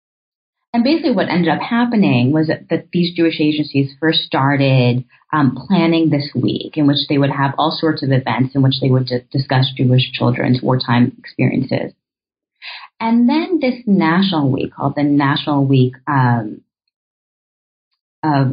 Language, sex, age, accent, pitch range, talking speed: English, female, 30-49, American, 140-195 Hz, 155 wpm